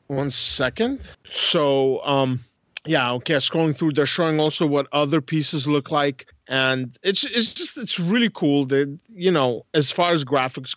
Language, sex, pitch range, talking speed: English, male, 125-155 Hz, 165 wpm